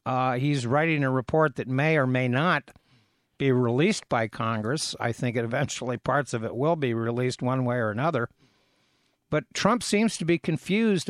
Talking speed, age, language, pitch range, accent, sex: 180 wpm, 60-79, English, 130-170 Hz, American, male